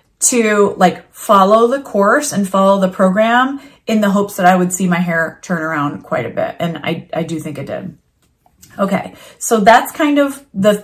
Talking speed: 200 wpm